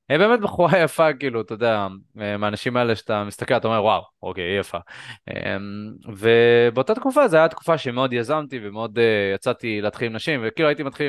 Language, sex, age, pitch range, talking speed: Hebrew, male, 20-39, 105-155 Hz, 160 wpm